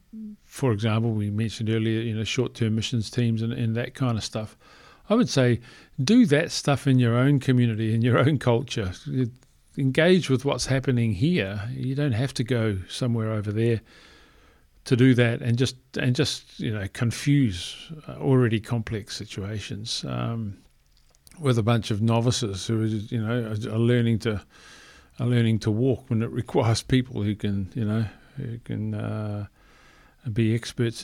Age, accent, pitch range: 50-69, British, 105-130 Hz